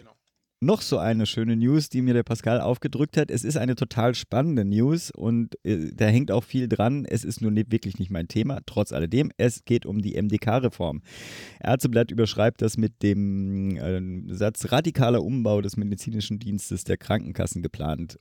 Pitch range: 95-125 Hz